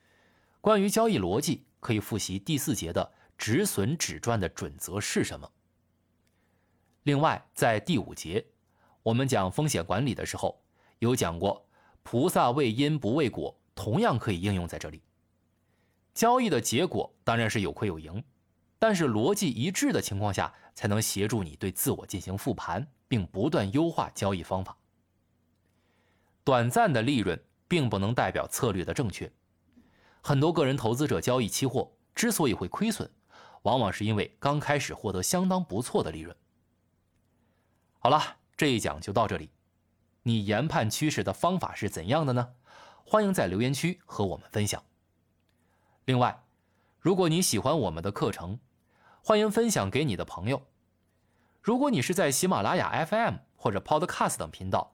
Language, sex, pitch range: Chinese, male, 90-135 Hz